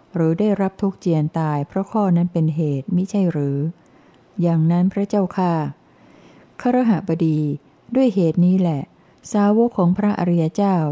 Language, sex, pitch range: Thai, female, 155-185 Hz